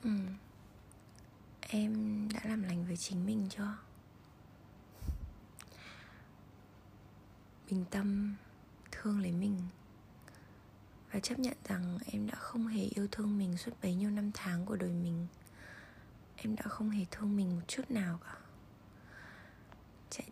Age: 20-39